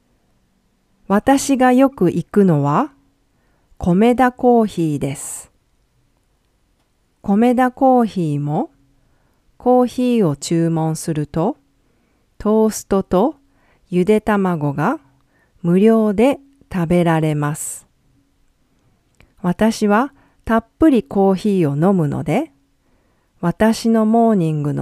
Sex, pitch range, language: female, 155-235 Hz, English